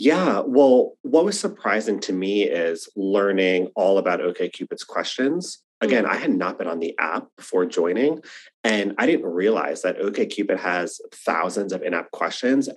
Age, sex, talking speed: 30-49, male, 160 wpm